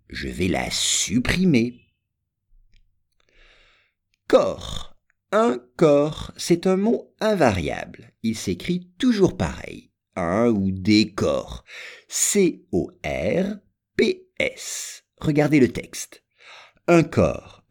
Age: 50-69